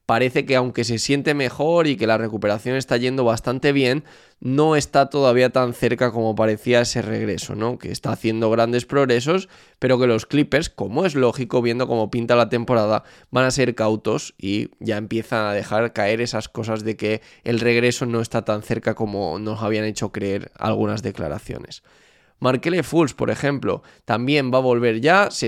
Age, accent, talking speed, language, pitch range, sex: 20-39, Spanish, 185 wpm, Spanish, 110-130 Hz, male